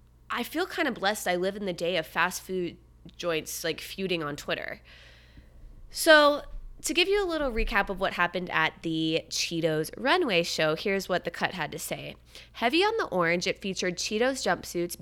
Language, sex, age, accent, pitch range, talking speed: English, female, 20-39, American, 165-245 Hz, 190 wpm